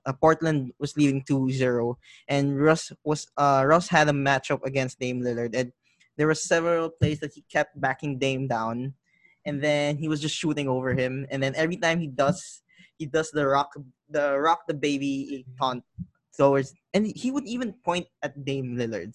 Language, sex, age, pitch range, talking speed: English, male, 20-39, 135-160 Hz, 185 wpm